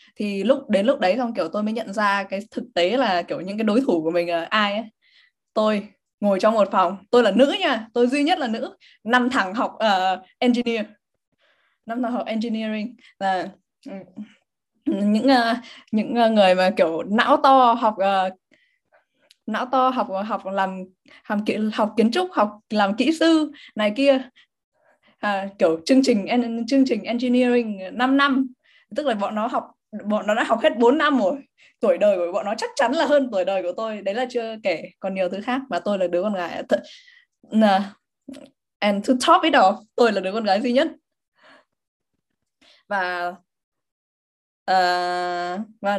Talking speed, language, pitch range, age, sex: 180 wpm, Vietnamese, 195-265 Hz, 20-39, female